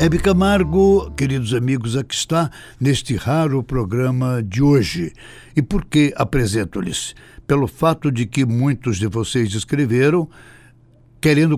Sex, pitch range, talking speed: male, 115-140 Hz, 125 wpm